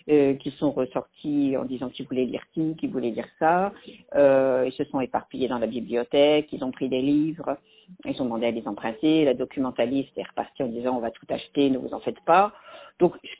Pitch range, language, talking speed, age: 135-185 Hz, French, 225 wpm, 50-69